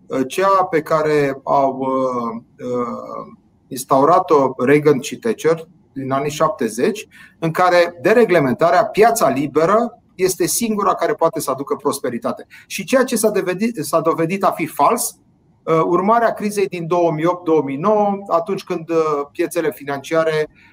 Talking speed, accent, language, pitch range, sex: 120 wpm, native, Romanian, 155-215 Hz, male